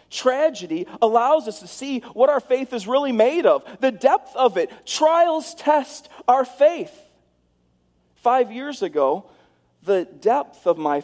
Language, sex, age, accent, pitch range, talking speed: English, male, 40-59, American, 190-255 Hz, 145 wpm